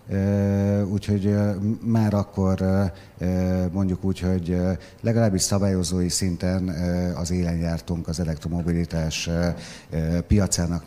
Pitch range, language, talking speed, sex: 90-100 Hz, Hungarian, 85 wpm, male